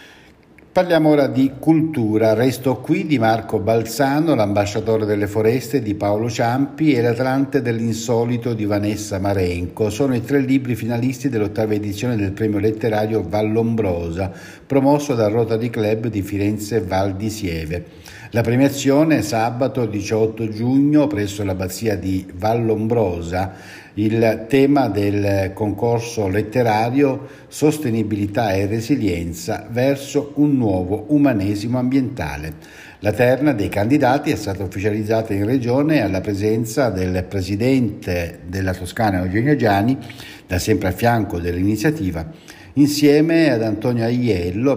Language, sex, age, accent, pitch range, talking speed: Italian, male, 60-79, native, 100-135 Hz, 120 wpm